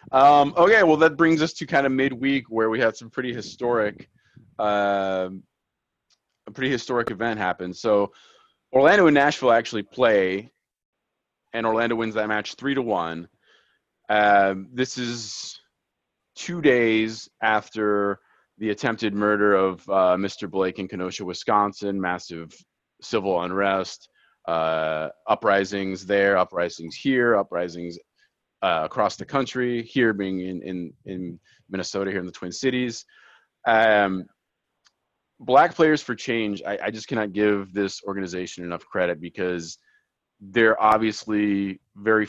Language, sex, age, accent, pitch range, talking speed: English, male, 30-49, American, 95-115 Hz, 135 wpm